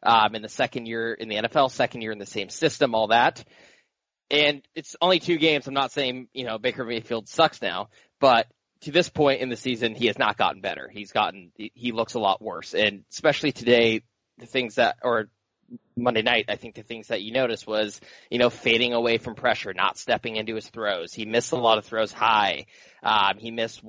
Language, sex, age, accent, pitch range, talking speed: English, male, 20-39, American, 110-135 Hz, 220 wpm